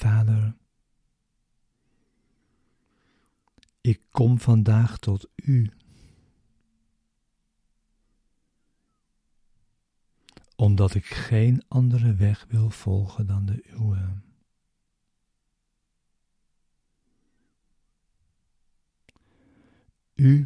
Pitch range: 100-120 Hz